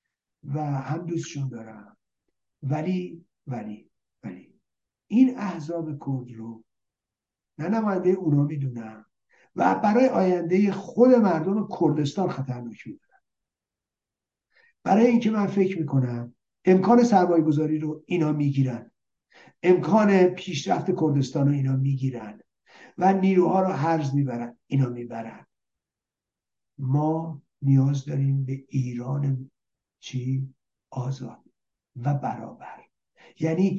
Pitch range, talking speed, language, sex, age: 125-180 Hz, 110 wpm, Persian, male, 60-79